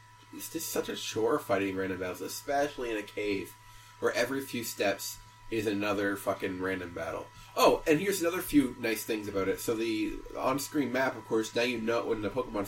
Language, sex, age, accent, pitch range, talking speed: English, male, 30-49, American, 105-140 Hz, 200 wpm